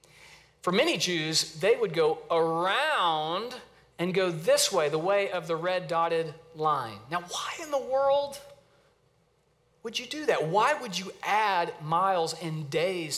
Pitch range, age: 155-210 Hz, 40-59